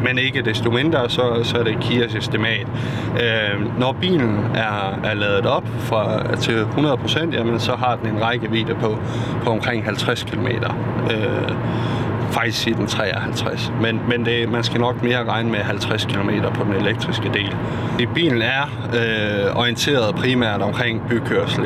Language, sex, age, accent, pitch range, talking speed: Danish, male, 30-49, native, 110-120 Hz, 160 wpm